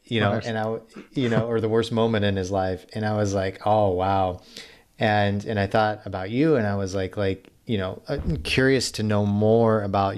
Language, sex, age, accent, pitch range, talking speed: English, male, 30-49, American, 95-110 Hz, 225 wpm